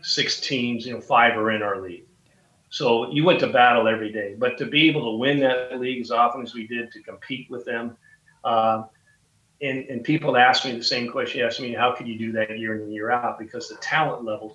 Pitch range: 115-145 Hz